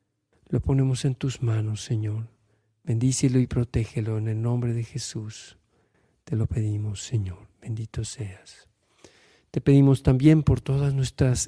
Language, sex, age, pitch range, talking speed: Spanish, male, 50-69, 115-135 Hz, 135 wpm